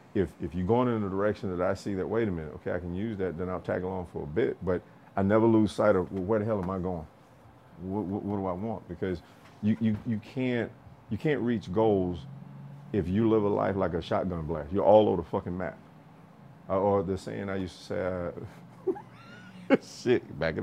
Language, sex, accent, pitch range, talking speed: English, male, American, 90-115 Hz, 235 wpm